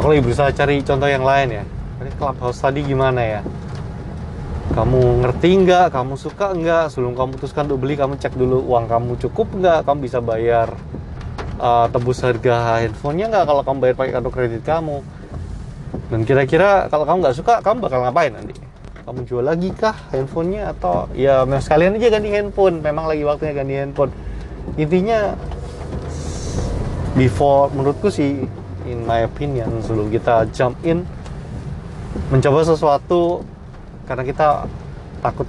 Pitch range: 115-150 Hz